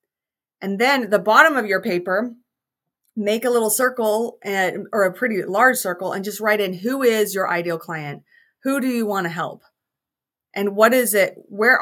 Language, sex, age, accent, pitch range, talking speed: English, female, 30-49, American, 190-240 Hz, 190 wpm